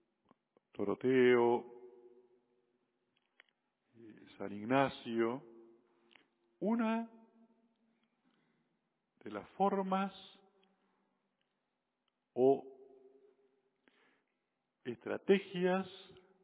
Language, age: Spanish, 50-69